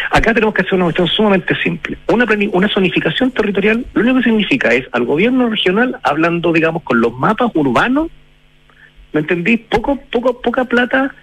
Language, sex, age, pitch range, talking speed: Spanish, male, 40-59, 150-245 Hz, 170 wpm